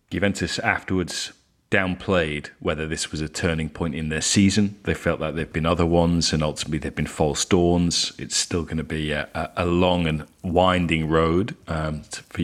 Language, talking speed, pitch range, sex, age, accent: English, 190 wpm, 80-90 Hz, male, 30-49, British